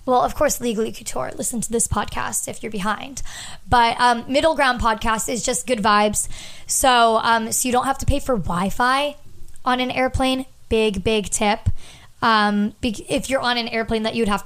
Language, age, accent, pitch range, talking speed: English, 20-39, American, 215-250 Hz, 190 wpm